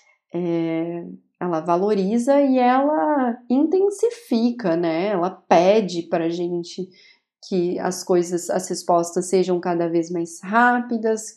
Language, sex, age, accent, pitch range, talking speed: Portuguese, female, 30-49, Brazilian, 180-235 Hz, 110 wpm